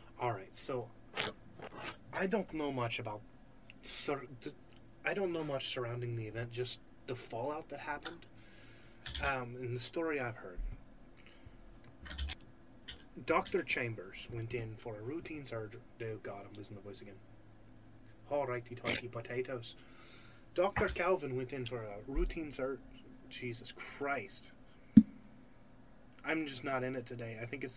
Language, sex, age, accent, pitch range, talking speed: English, male, 20-39, American, 115-135 Hz, 145 wpm